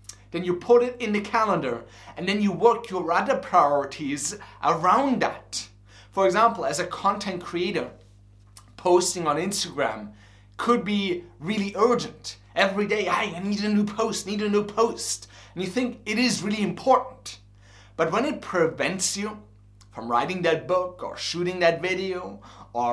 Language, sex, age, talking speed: English, male, 30-49, 160 wpm